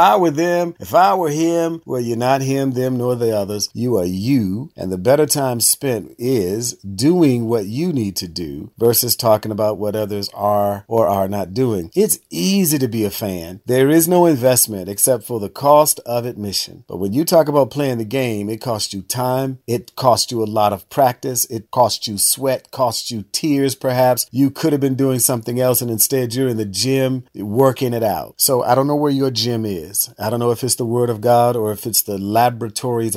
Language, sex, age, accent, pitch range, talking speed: English, male, 50-69, American, 105-130 Hz, 220 wpm